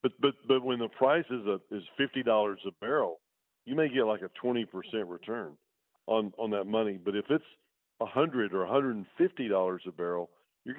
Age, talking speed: 50-69, 215 wpm